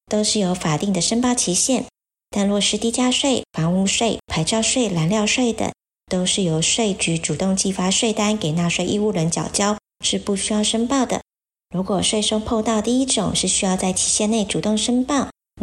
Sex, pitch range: male, 175-225 Hz